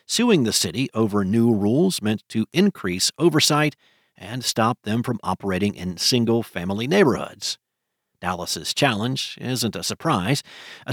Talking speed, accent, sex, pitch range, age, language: 130 wpm, American, male, 105-135 Hz, 50-69, English